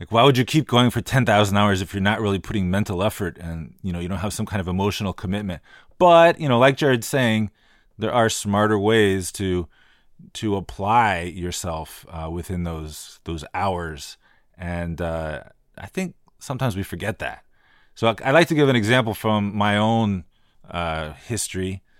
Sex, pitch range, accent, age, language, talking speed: male, 90-115 Hz, American, 30-49, English, 180 wpm